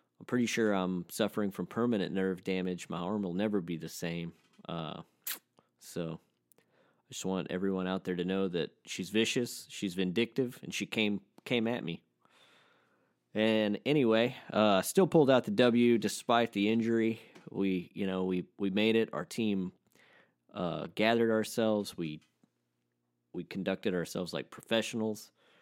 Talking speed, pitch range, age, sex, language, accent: 155 wpm, 85-110 Hz, 30-49, male, English, American